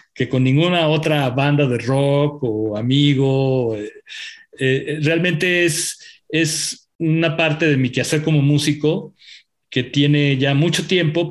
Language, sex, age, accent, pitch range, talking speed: English, male, 40-59, Mexican, 130-165 Hz, 140 wpm